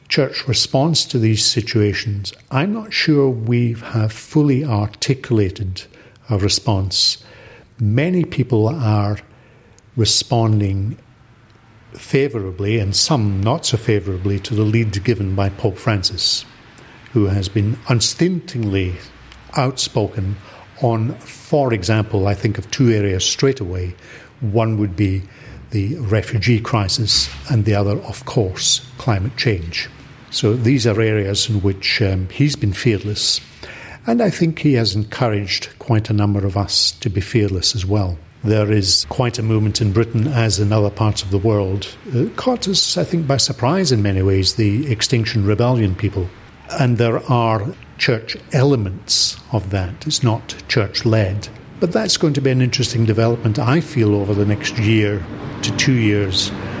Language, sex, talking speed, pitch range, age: English, male, 150 wpm, 100-125 Hz, 50-69